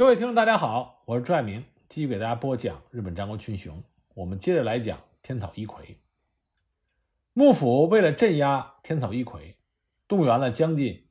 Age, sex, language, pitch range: 50-69, male, Chinese, 110-185 Hz